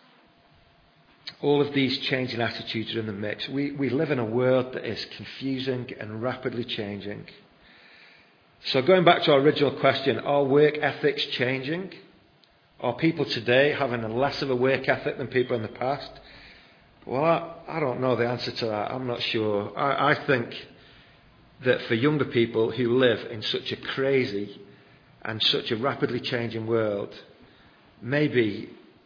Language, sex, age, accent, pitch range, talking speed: English, male, 40-59, British, 110-135 Hz, 165 wpm